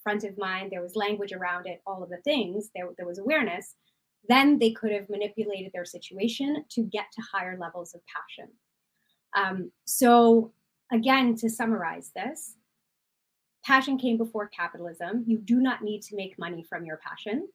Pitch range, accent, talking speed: 190-230 Hz, American, 170 wpm